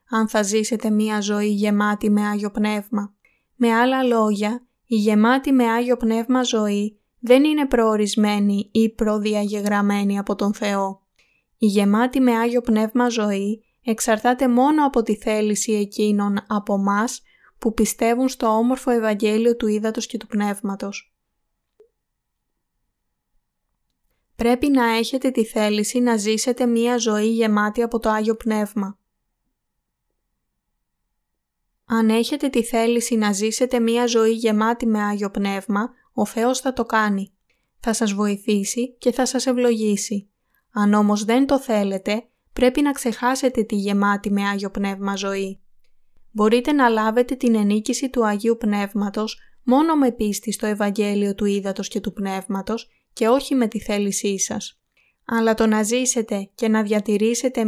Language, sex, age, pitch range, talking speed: Greek, female, 20-39, 210-240 Hz, 135 wpm